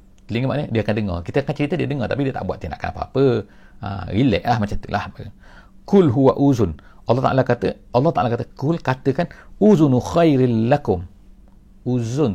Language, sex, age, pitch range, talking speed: English, male, 50-69, 100-135 Hz, 180 wpm